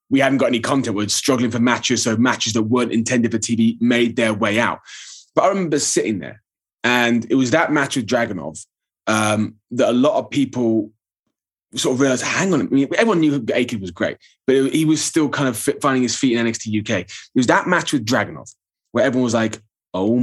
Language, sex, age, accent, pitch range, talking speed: English, male, 20-39, British, 115-135 Hz, 210 wpm